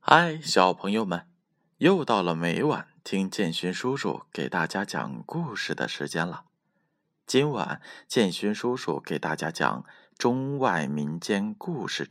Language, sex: Chinese, male